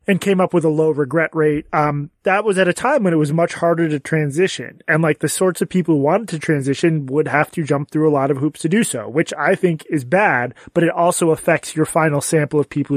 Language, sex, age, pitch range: English, male, 20-39, 150-180 Hz